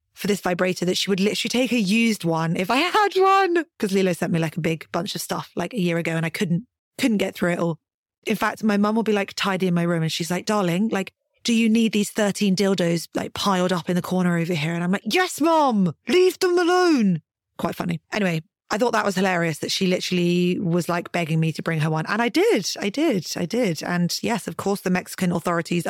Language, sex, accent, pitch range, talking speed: English, female, British, 175-220 Hz, 250 wpm